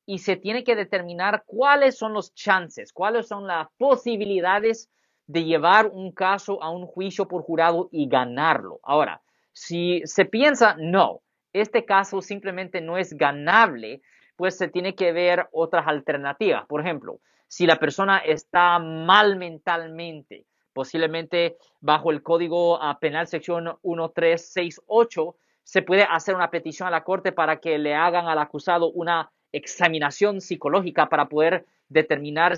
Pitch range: 165-195 Hz